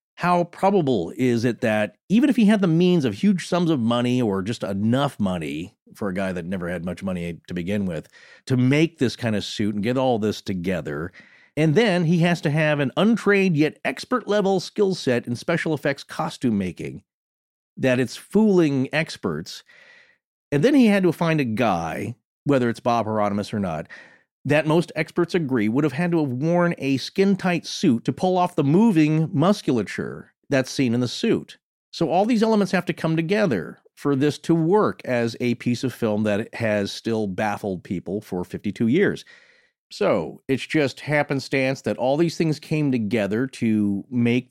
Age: 40-59